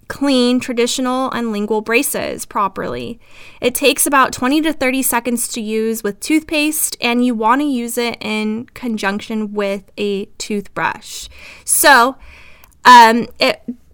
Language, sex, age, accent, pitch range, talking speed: English, female, 10-29, American, 220-265 Hz, 135 wpm